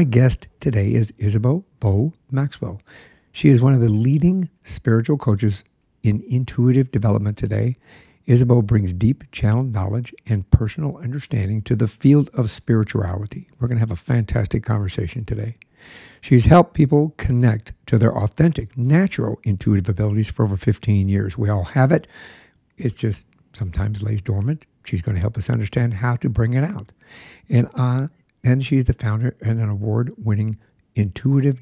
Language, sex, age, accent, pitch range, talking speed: English, male, 60-79, American, 110-135 Hz, 160 wpm